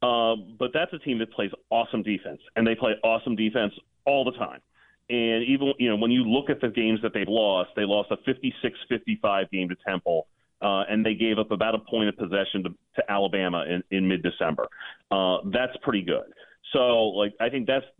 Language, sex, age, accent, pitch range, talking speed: English, male, 30-49, American, 105-135 Hz, 210 wpm